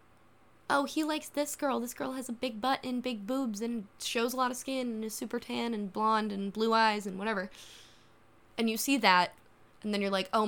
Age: 10-29